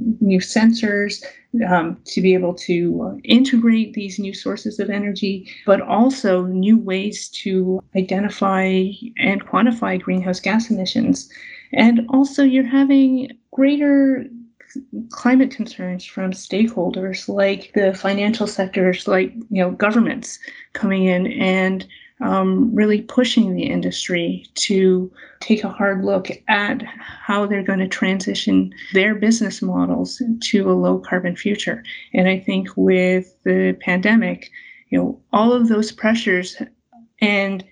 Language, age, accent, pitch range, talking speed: English, 30-49, American, 185-230 Hz, 130 wpm